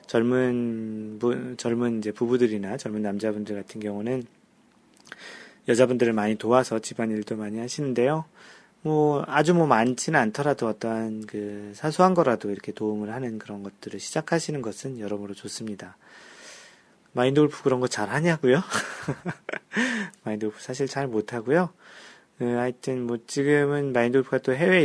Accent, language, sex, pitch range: native, Korean, male, 110-145 Hz